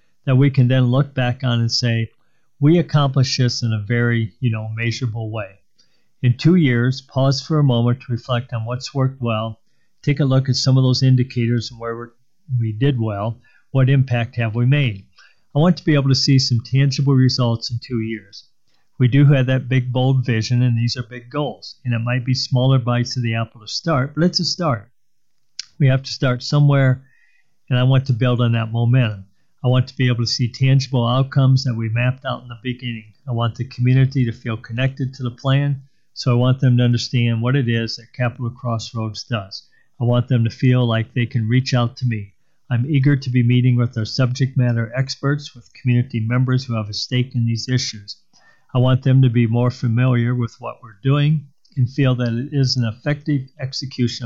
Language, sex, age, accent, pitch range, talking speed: English, male, 50-69, American, 115-130 Hz, 215 wpm